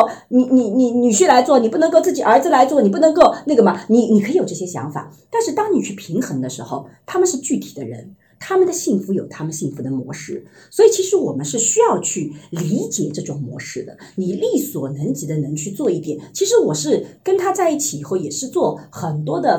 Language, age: Chinese, 40-59